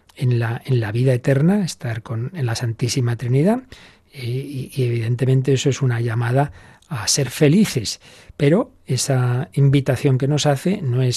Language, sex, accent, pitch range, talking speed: Spanish, male, Spanish, 120-145 Hz, 160 wpm